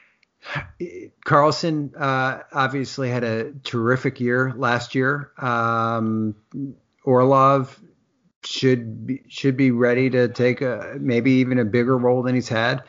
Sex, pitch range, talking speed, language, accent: male, 115-130 Hz, 125 wpm, English, American